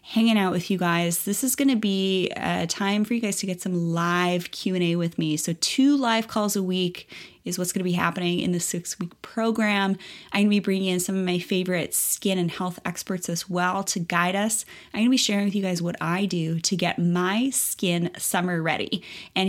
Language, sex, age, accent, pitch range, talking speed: English, female, 20-39, American, 175-205 Hz, 230 wpm